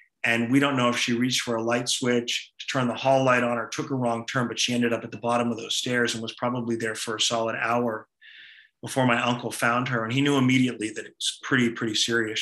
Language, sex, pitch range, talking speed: English, male, 115-125 Hz, 265 wpm